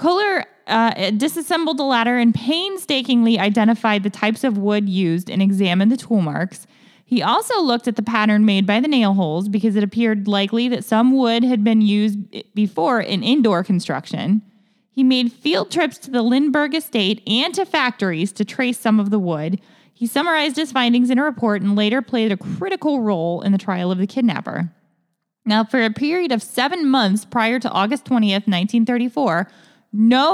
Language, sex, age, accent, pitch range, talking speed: English, female, 20-39, American, 200-250 Hz, 180 wpm